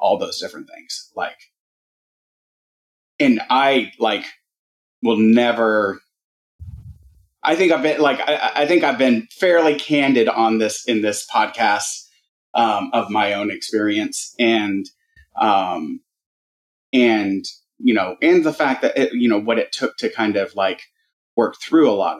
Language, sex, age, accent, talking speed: English, male, 30-49, American, 150 wpm